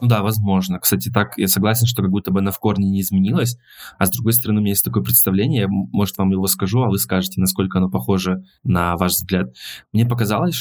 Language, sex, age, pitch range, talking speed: Russian, male, 20-39, 95-110 Hz, 230 wpm